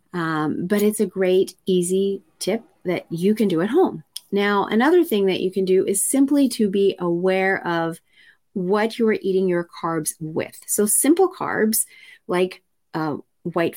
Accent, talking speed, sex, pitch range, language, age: American, 170 wpm, female, 175-220 Hz, English, 30-49